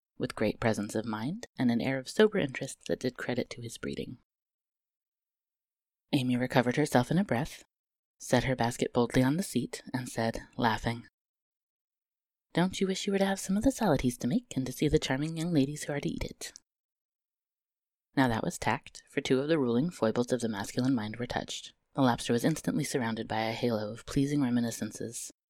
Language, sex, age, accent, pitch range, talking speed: English, female, 20-39, American, 110-145 Hz, 200 wpm